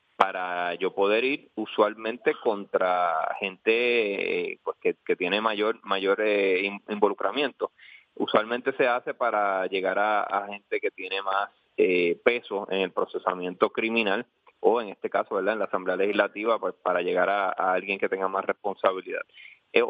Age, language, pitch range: 30-49, Spanish, 100-135 Hz